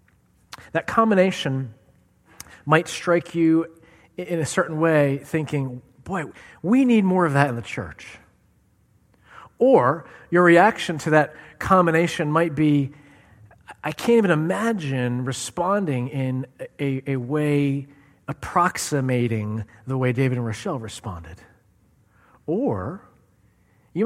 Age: 40-59